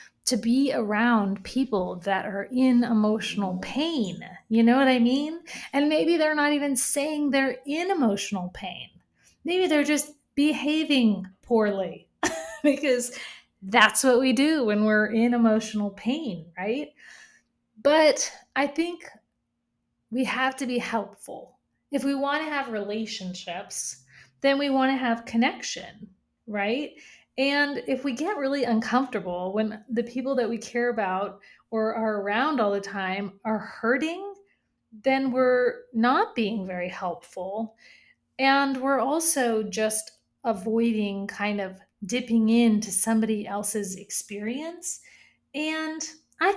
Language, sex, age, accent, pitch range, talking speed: English, female, 30-49, American, 210-280 Hz, 130 wpm